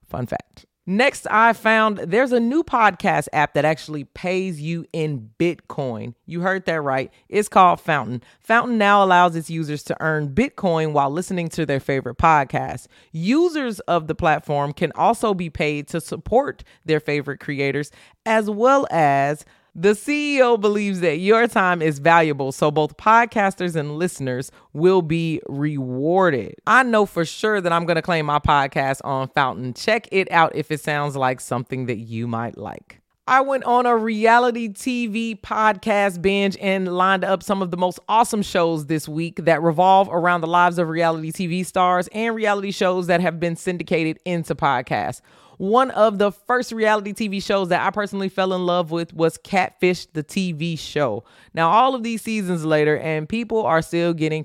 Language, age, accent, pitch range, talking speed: English, 30-49, American, 155-205 Hz, 175 wpm